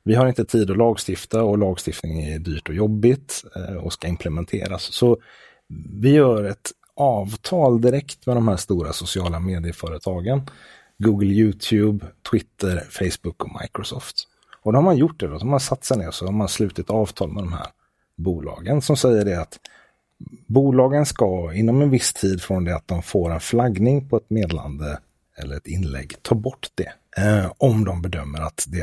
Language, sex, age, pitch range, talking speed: English, male, 30-49, 85-125 Hz, 175 wpm